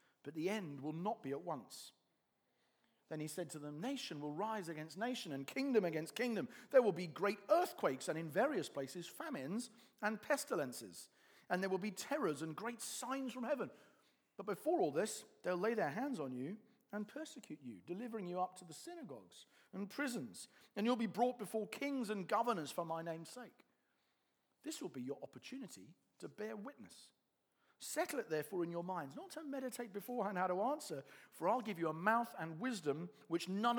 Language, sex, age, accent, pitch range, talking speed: English, male, 40-59, British, 155-240 Hz, 190 wpm